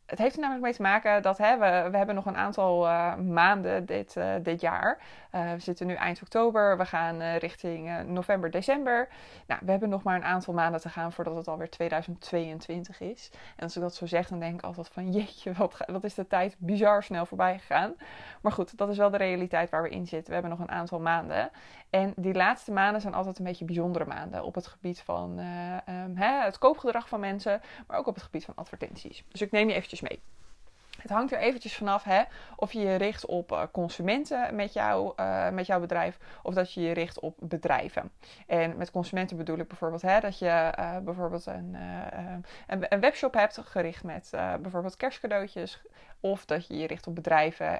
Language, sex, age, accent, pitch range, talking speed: Dutch, female, 20-39, Dutch, 170-205 Hz, 215 wpm